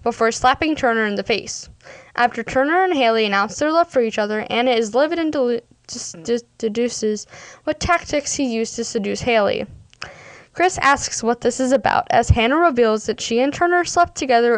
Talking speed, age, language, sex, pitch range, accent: 175 wpm, 10-29, English, female, 225-275 Hz, American